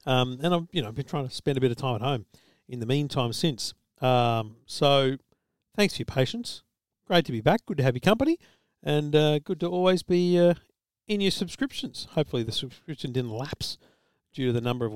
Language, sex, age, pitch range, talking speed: English, male, 50-69, 120-145 Hz, 215 wpm